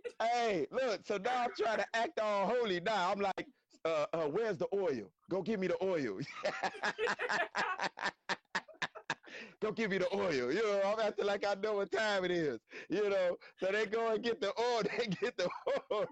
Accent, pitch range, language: American, 200-255 Hz, English